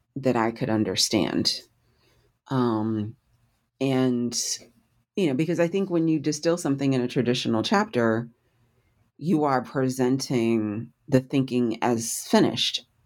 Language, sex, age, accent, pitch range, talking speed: English, female, 40-59, American, 115-135 Hz, 120 wpm